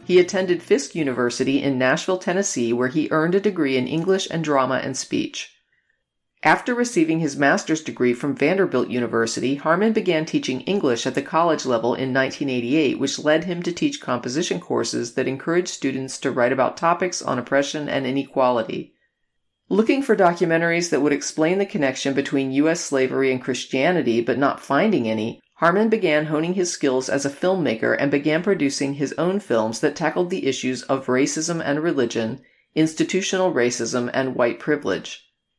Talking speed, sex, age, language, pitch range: 165 wpm, female, 40-59, English, 130-170 Hz